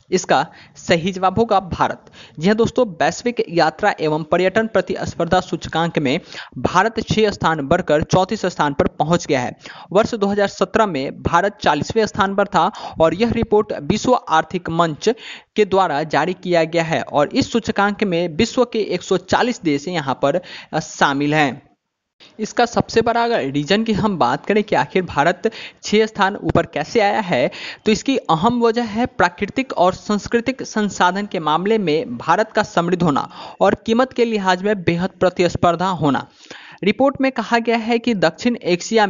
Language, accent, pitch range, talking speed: Hindi, native, 170-220 Hz, 165 wpm